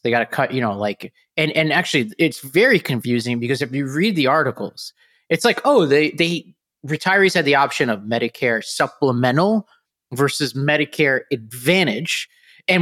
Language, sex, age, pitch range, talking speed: English, male, 20-39, 120-155 Hz, 160 wpm